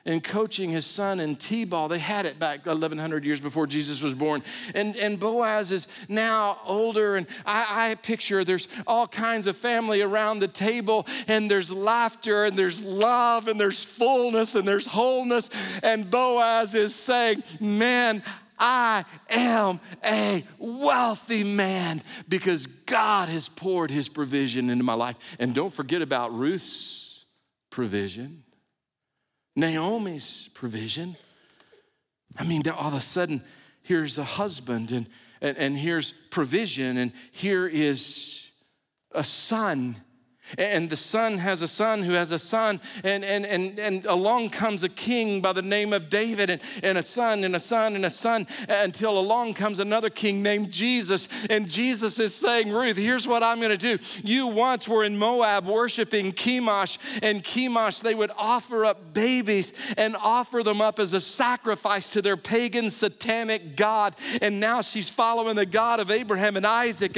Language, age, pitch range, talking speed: English, 50-69, 180-225 Hz, 160 wpm